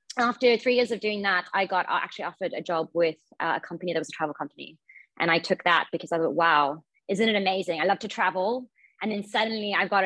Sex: female